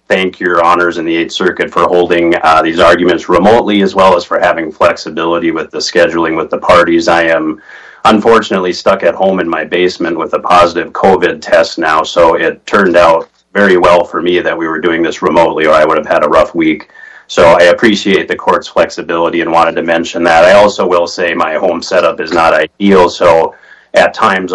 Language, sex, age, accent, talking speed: English, male, 30-49, American, 210 wpm